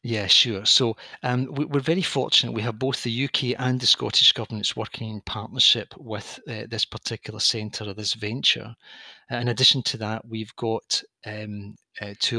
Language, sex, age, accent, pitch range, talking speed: English, male, 40-59, British, 110-120 Hz, 175 wpm